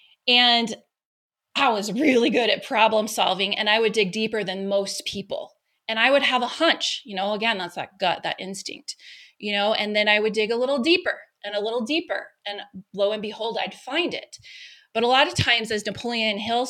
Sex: female